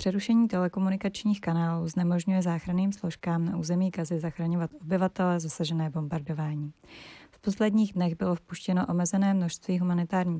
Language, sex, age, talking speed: Czech, female, 30-49, 120 wpm